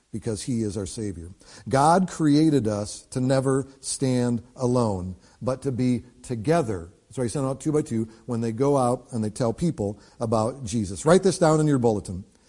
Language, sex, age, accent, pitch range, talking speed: English, male, 50-69, American, 125-160 Hz, 190 wpm